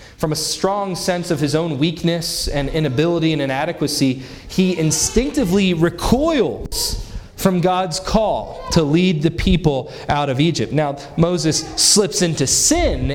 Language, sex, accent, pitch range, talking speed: English, male, American, 140-200 Hz, 135 wpm